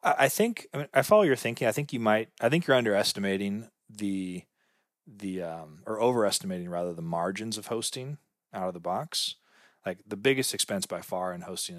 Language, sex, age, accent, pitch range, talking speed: English, male, 30-49, American, 95-130 Hz, 210 wpm